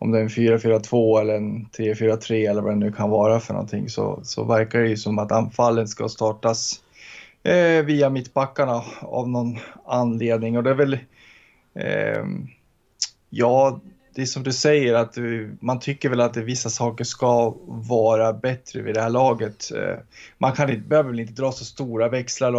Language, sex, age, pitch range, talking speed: Swedish, male, 20-39, 115-130 Hz, 180 wpm